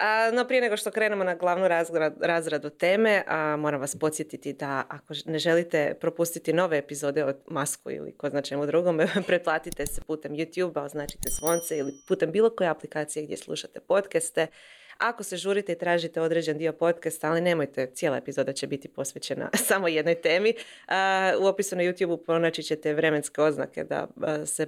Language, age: Croatian, 30-49